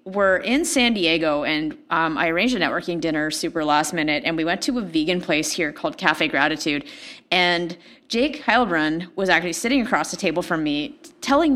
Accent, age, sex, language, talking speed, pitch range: American, 30-49, female, English, 190 wpm, 170-265 Hz